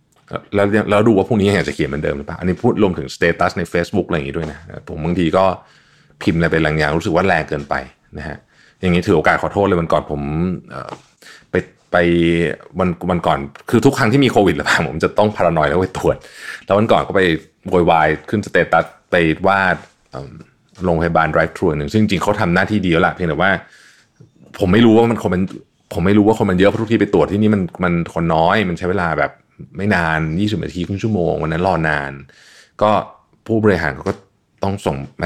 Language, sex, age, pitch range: Thai, male, 30-49, 80-100 Hz